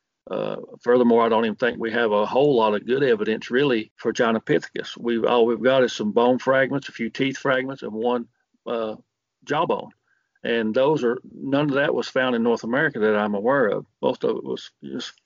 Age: 50-69